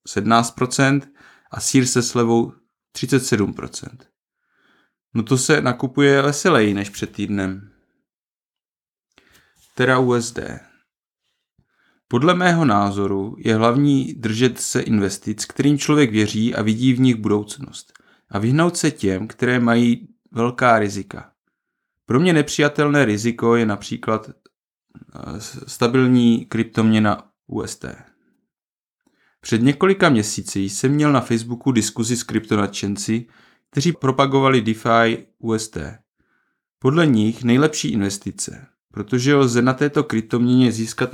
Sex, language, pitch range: male, Czech, 110-135 Hz